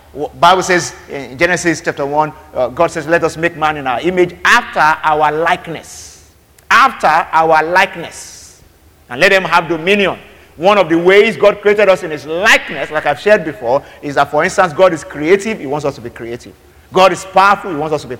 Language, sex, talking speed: English, male, 205 wpm